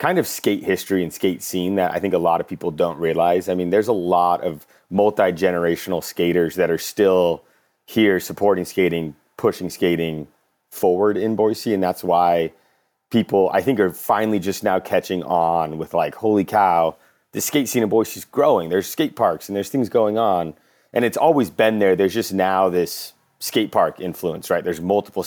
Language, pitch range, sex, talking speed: English, 85-105 Hz, male, 190 wpm